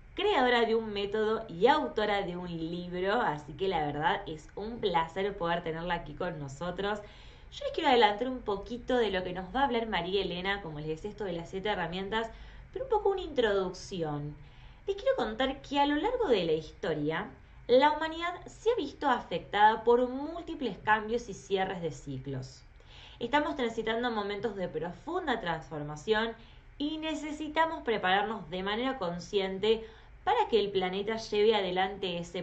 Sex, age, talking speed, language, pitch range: female, 20-39, 170 wpm, Spanish, 180-245 Hz